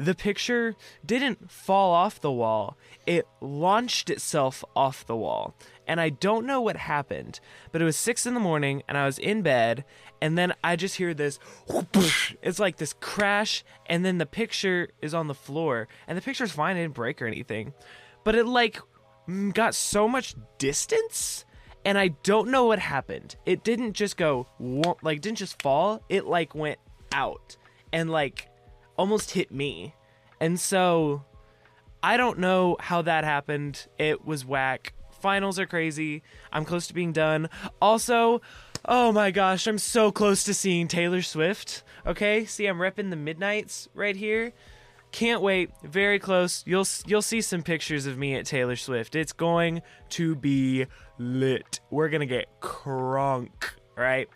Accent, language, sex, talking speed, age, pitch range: American, English, male, 170 wpm, 20-39, 140-200 Hz